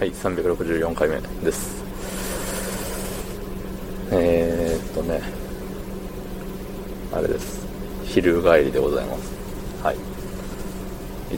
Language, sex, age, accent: Japanese, male, 20-39, native